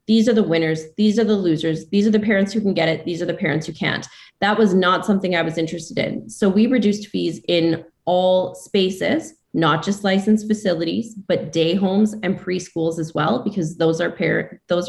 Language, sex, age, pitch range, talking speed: English, female, 20-39, 170-210 Hz, 215 wpm